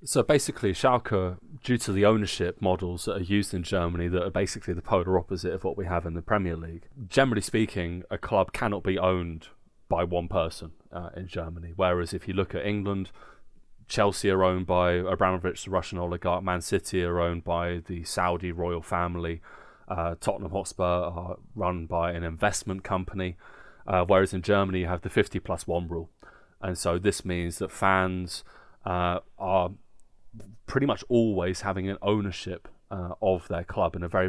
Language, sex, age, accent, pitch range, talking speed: English, male, 30-49, British, 85-100 Hz, 180 wpm